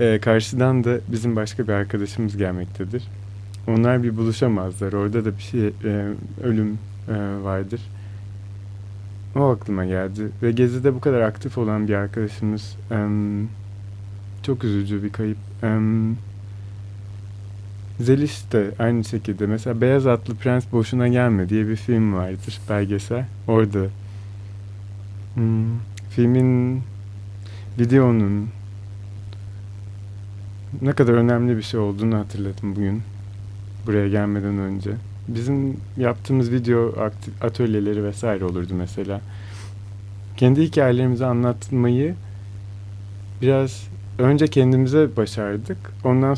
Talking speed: 105 wpm